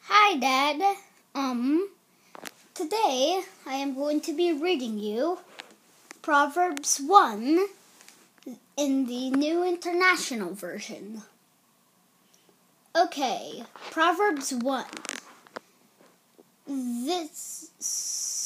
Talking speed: 70 wpm